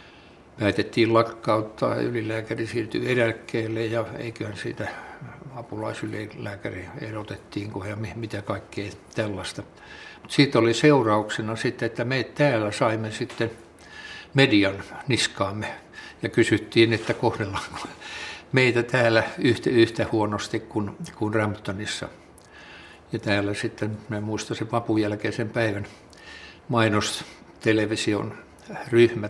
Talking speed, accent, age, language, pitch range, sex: 100 wpm, native, 60-79, Finnish, 105-115 Hz, male